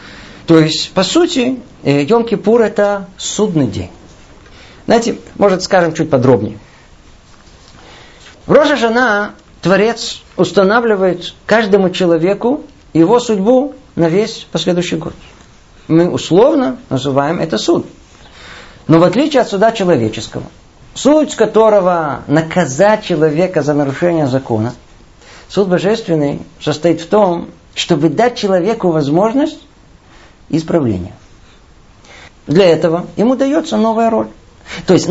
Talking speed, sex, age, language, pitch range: 105 wpm, male, 50-69, Russian, 150-215 Hz